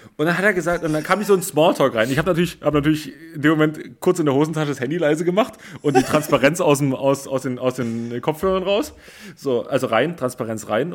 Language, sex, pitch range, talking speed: German, male, 130-165 Hz, 250 wpm